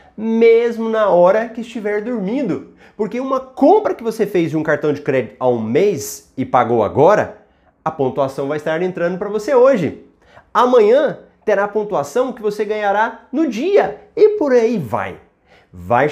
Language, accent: Portuguese, Brazilian